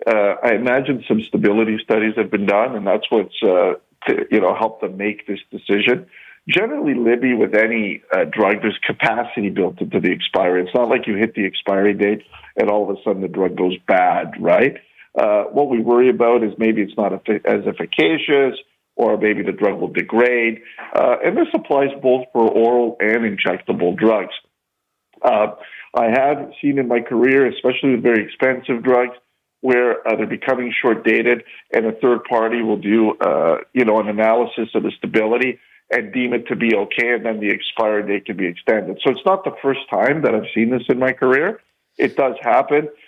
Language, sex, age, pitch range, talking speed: English, male, 50-69, 105-125 Hz, 195 wpm